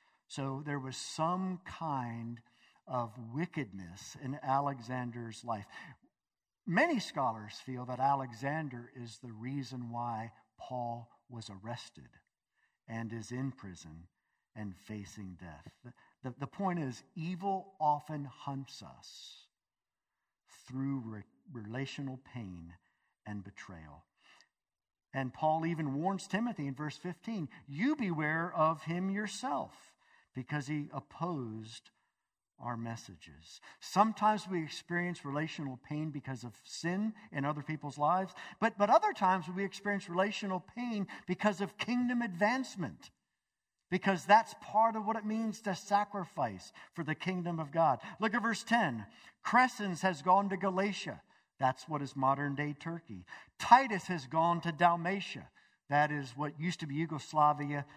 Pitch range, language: 125-185 Hz, English